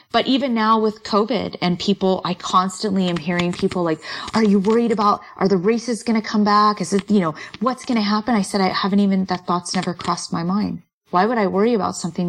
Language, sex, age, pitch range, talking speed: English, female, 30-49, 180-220 Hz, 240 wpm